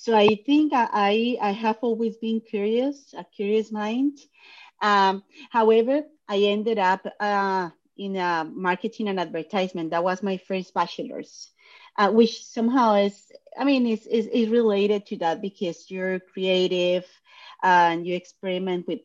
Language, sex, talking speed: English, female, 150 wpm